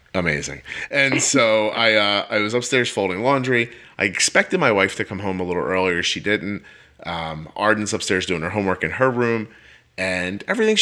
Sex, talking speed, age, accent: male, 185 wpm, 30-49, American